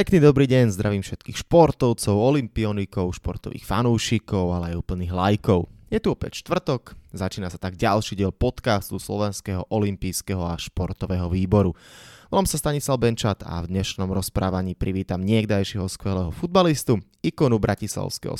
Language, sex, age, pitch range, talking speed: Slovak, male, 20-39, 95-125 Hz, 135 wpm